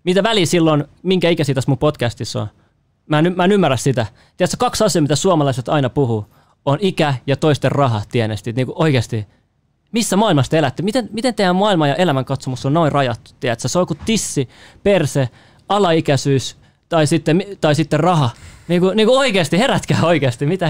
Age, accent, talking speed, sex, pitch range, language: 20-39, native, 185 wpm, male, 125-170 Hz, Finnish